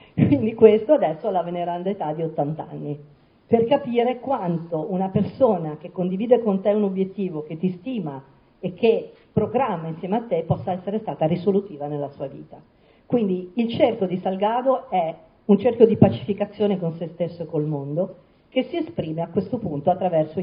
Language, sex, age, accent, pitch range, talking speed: Italian, female, 50-69, native, 165-240 Hz, 175 wpm